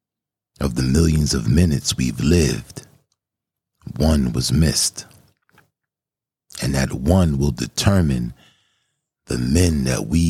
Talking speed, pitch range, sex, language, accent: 110 wpm, 70-90 Hz, male, English, American